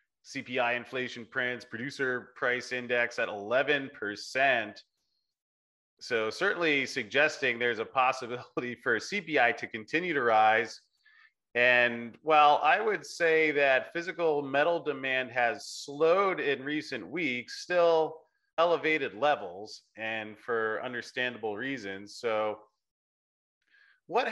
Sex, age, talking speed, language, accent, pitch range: male, 30-49, 105 wpm, English, American, 115-155 Hz